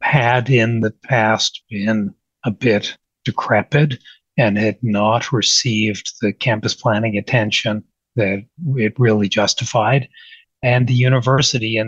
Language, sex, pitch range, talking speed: English, male, 110-135 Hz, 120 wpm